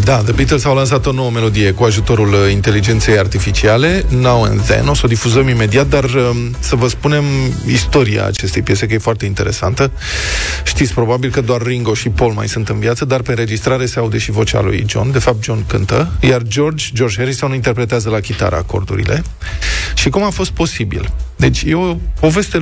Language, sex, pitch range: Romanian, male, 105-140 Hz